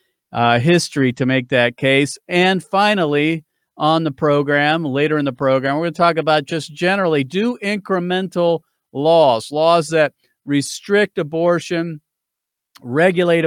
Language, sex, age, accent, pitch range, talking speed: English, male, 40-59, American, 135-165 Hz, 135 wpm